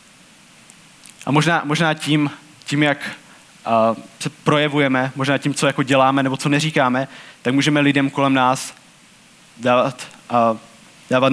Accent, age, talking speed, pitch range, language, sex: native, 20-39, 125 wpm, 130-155 Hz, Czech, male